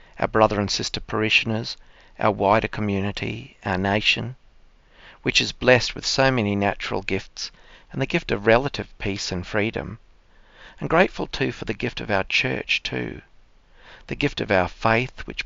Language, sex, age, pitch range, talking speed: English, male, 40-59, 95-115 Hz, 165 wpm